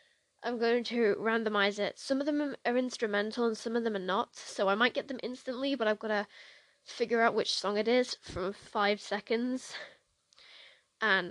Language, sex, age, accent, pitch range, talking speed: English, female, 10-29, British, 215-260 Hz, 190 wpm